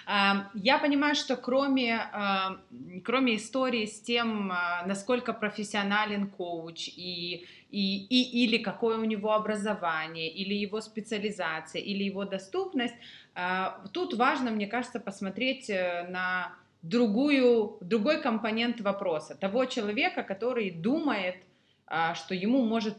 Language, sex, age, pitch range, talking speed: Russian, female, 20-39, 195-240 Hz, 110 wpm